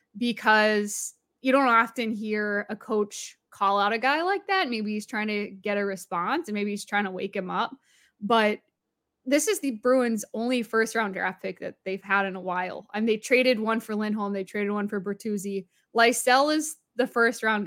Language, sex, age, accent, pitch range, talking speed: English, female, 10-29, American, 195-235 Hz, 205 wpm